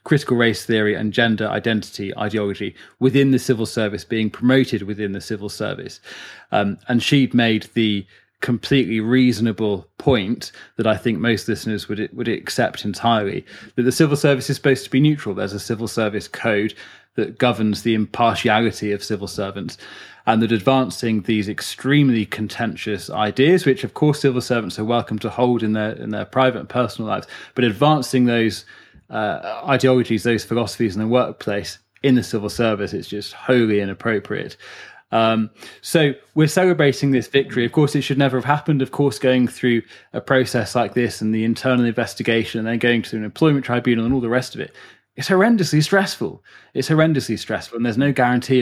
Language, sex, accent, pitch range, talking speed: English, male, British, 110-130 Hz, 180 wpm